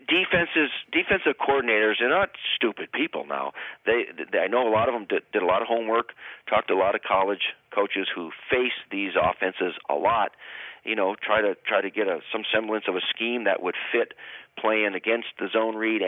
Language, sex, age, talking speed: English, male, 40-59, 205 wpm